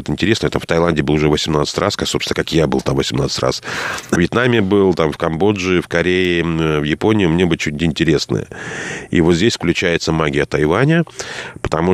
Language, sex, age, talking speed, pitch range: Russian, male, 30-49, 185 wpm, 75-105 Hz